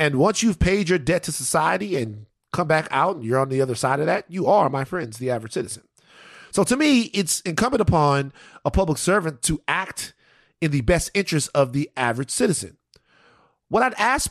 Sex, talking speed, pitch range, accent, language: male, 205 wpm, 125-185 Hz, American, English